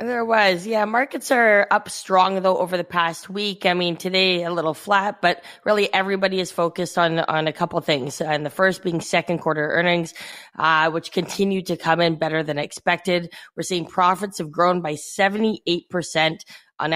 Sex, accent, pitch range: female, American, 155-180 Hz